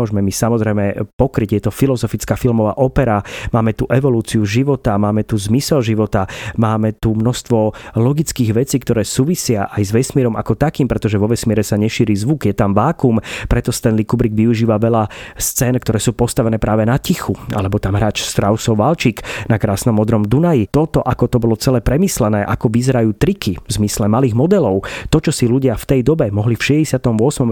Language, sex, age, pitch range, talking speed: Slovak, male, 30-49, 110-135 Hz, 180 wpm